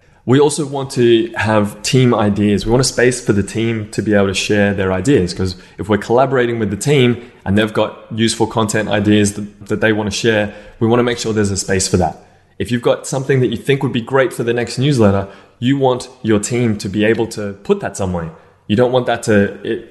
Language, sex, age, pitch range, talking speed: English, male, 20-39, 95-115 Hz, 245 wpm